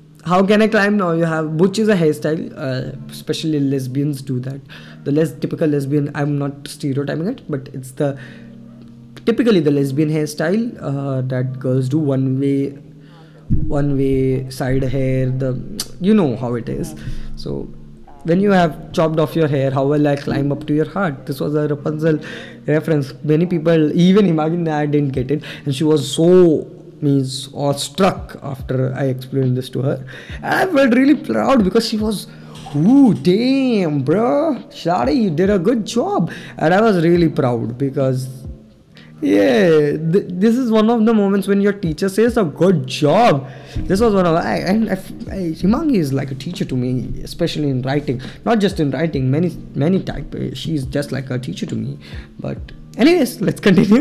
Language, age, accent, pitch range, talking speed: English, 20-39, Indian, 135-185 Hz, 180 wpm